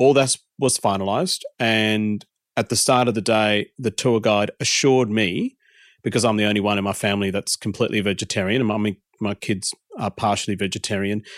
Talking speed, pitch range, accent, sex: 180 wpm, 105-125 Hz, Australian, male